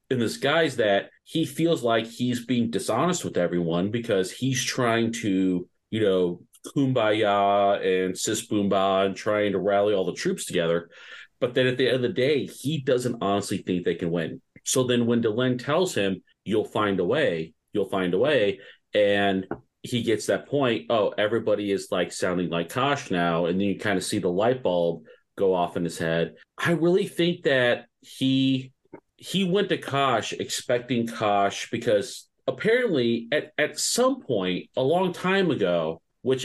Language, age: English, 40-59